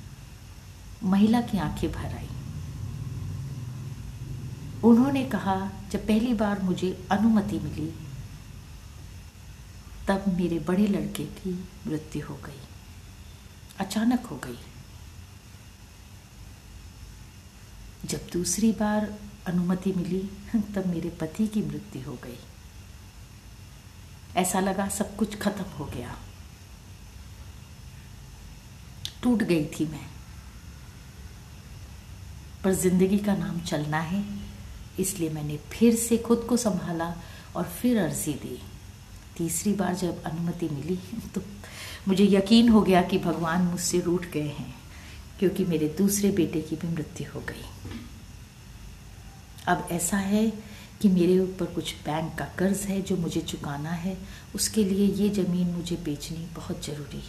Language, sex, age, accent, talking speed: Hindi, female, 60-79, native, 115 wpm